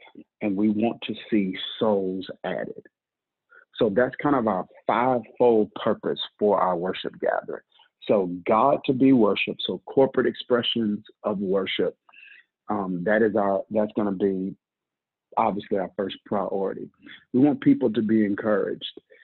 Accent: American